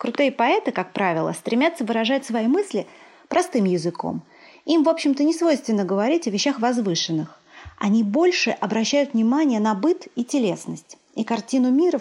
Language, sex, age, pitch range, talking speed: Russian, female, 30-49, 210-290 Hz, 150 wpm